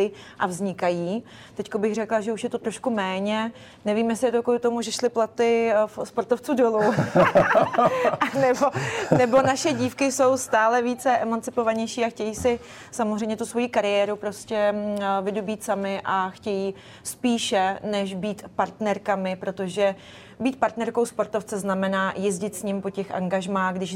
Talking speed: 150 wpm